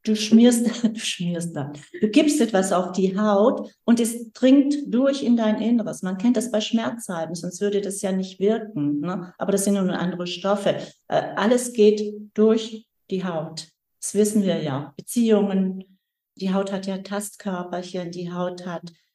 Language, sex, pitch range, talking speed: German, female, 185-215 Hz, 170 wpm